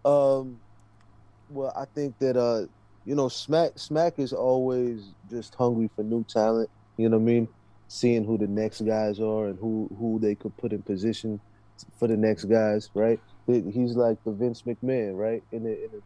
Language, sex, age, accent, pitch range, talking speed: English, male, 20-39, American, 105-125 Hz, 190 wpm